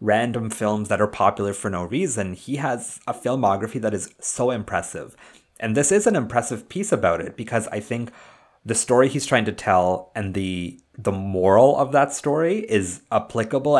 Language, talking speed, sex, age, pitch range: English, 185 wpm, male, 30-49, 100-130 Hz